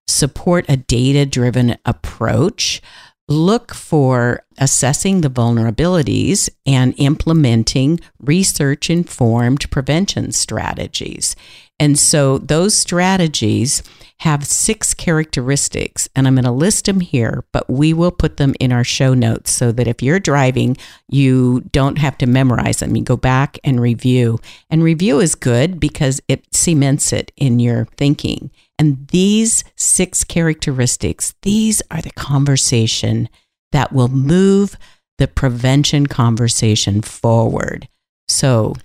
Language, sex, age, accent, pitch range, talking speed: English, female, 50-69, American, 120-155 Hz, 120 wpm